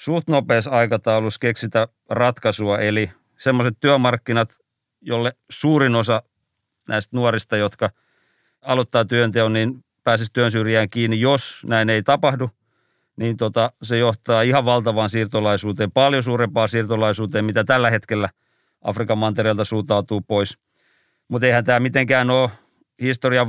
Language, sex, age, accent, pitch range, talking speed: Finnish, male, 40-59, native, 115-130 Hz, 120 wpm